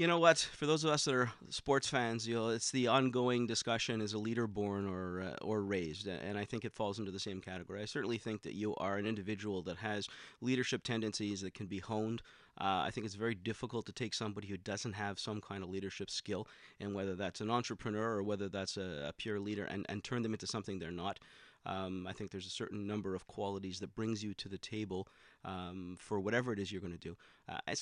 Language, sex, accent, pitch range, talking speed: English, male, American, 100-115 Hz, 240 wpm